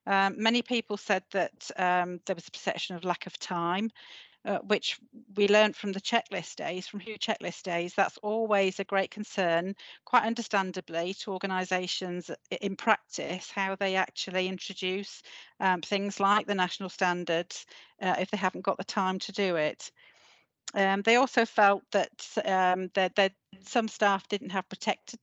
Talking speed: 165 wpm